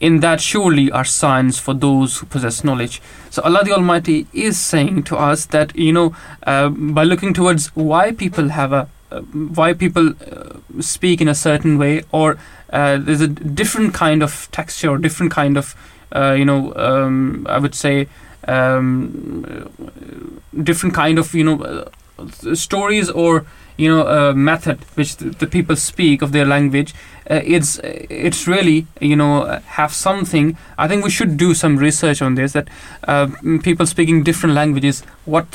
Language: English